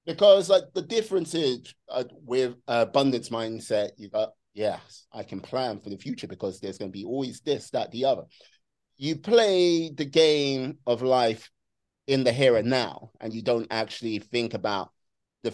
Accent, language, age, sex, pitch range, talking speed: British, English, 30-49, male, 115-140 Hz, 180 wpm